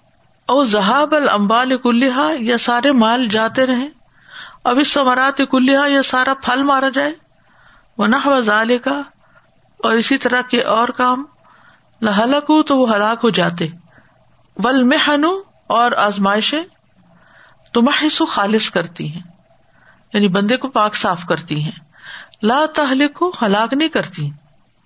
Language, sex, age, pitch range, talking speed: Urdu, female, 50-69, 190-265 Hz, 125 wpm